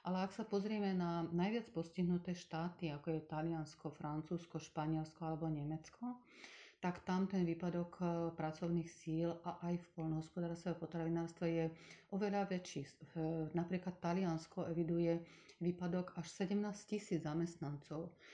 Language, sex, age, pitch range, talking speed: Slovak, female, 40-59, 160-180 Hz, 120 wpm